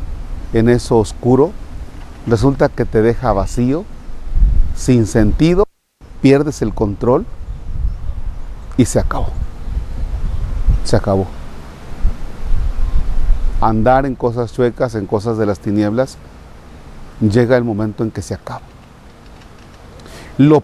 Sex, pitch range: male, 110-170 Hz